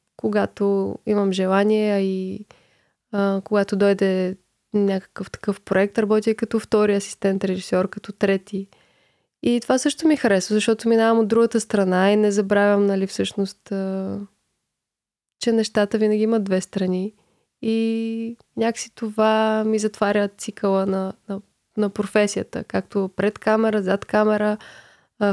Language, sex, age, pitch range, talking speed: Bulgarian, female, 20-39, 195-225 Hz, 130 wpm